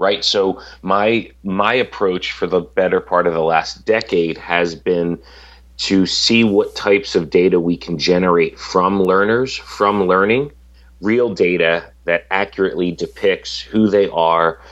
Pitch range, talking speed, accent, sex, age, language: 85-100 Hz, 145 wpm, American, male, 30-49, English